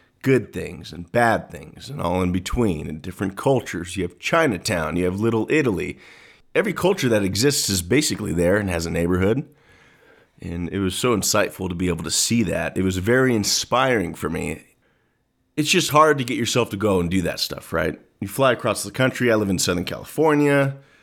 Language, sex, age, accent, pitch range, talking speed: English, male, 30-49, American, 90-115 Hz, 200 wpm